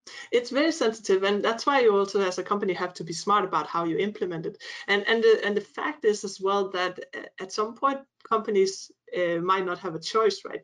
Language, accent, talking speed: English, Danish, 220 wpm